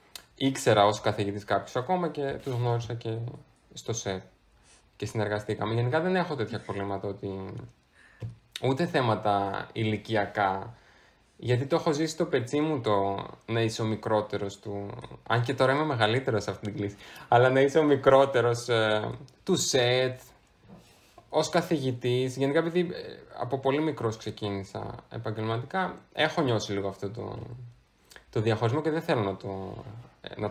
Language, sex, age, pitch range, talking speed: Greek, male, 20-39, 100-145 Hz, 140 wpm